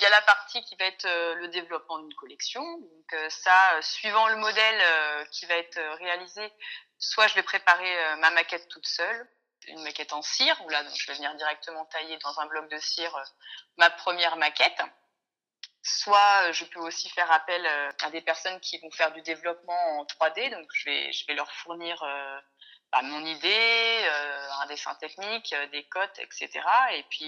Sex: female